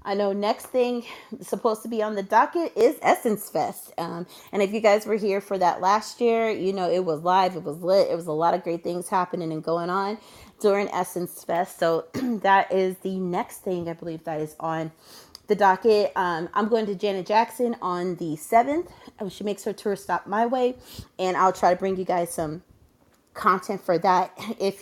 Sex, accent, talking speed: female, American, 210 wpm